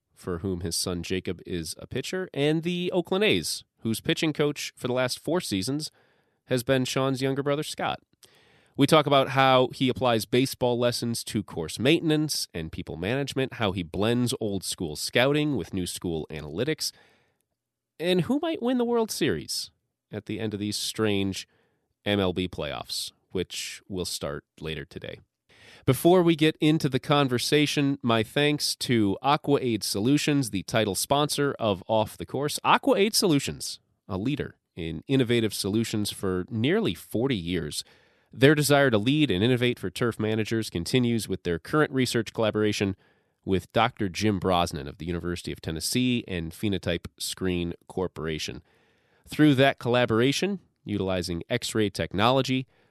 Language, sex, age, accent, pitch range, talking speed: English, male, 30-49, American, 95-140 Hz, 150 wpm